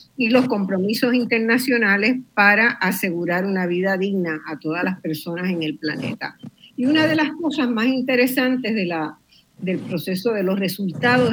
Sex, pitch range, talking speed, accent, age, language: female, 180-250 Hz, 160 wpm, American, 50-69, Spanish